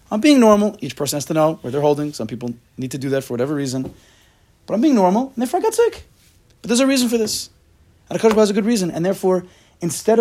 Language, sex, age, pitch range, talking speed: English, male, 30-49, 125-195 Hz, 265 wpm